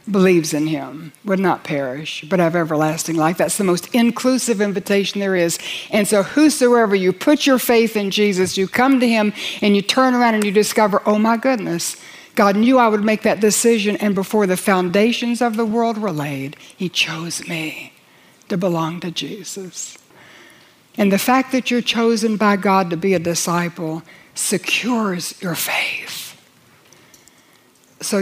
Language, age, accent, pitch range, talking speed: English, 60-79, American, 175-235 Hz, 170 wpm